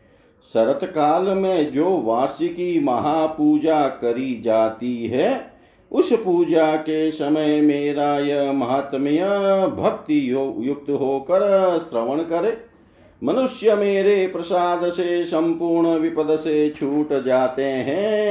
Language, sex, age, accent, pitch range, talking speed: Hindi, male, 50-69, native, 135-195 Hz, 100 wpm